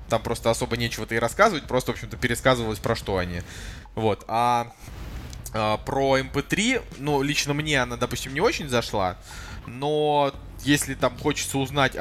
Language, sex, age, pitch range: Russian, male, 20-39, 110-140 Hz